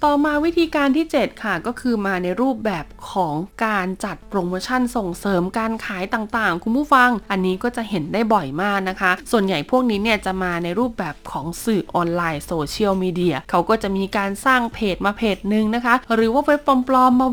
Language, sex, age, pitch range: Thai, female, 20-39, 185-245 Hz